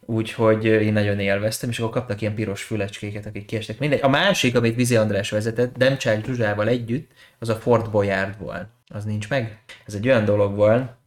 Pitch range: 105-120 Hz